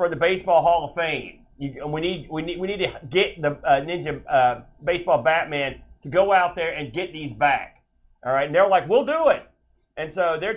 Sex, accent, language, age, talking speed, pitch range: male, American, English, 40-59, 225 wpm, 150-190 Hz